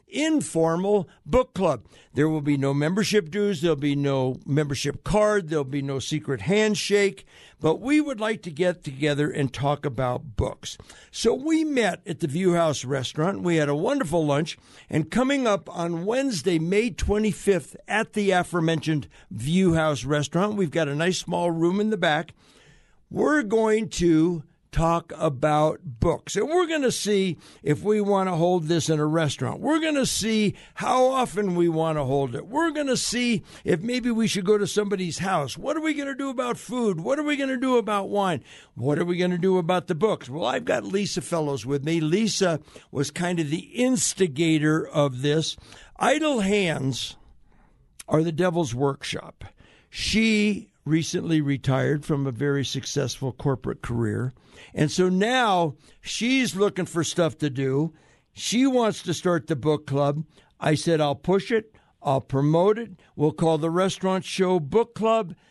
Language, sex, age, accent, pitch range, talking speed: English, male, 60-79, American, 150-210 Hz, 180 wpm